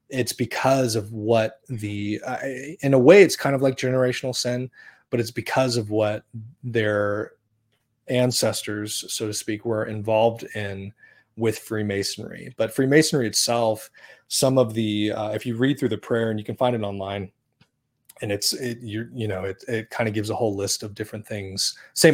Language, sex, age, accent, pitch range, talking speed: English, male, 30-49, American, 105-120 Hz, 180 wpm